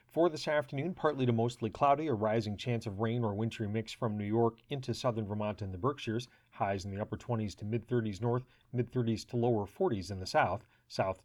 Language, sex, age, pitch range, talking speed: English, male, 40-59, 110-130 Hz, 225 wpm